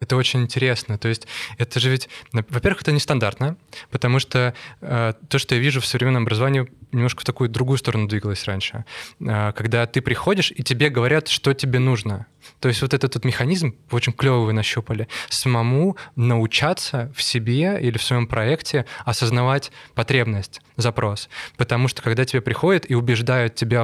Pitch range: 115-130 Hz